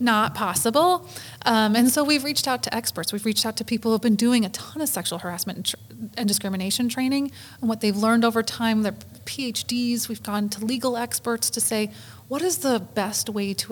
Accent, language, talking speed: American, English, 215 wpm